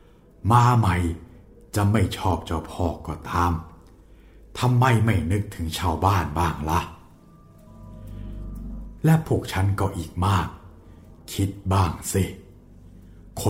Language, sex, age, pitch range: Thai, male, 60-79, 85-110 Hz